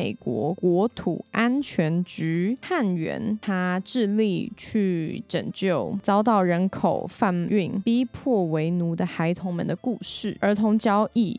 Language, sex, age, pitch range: Chinese, female, 20-39, 185-225 Hz